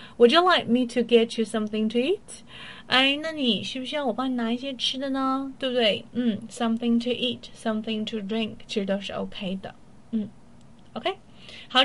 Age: 30-49